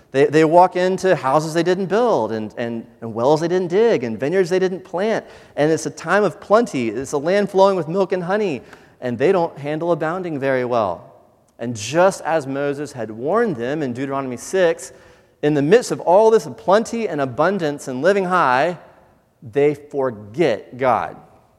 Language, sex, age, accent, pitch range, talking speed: English, male, 30-49, American, 120-170 Hz, 185 wpm